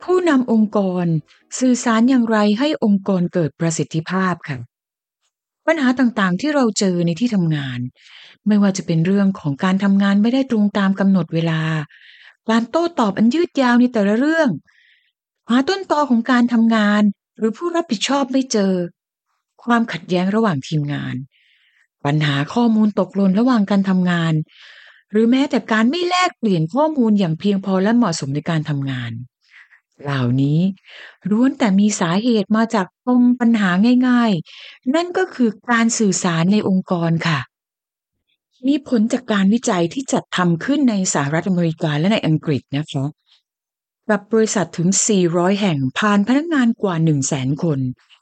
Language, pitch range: Thai, 175-245 Hz